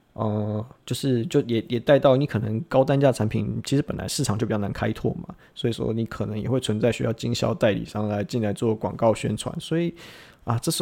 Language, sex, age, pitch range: Chinese, male, 20-39, 110-135 Hz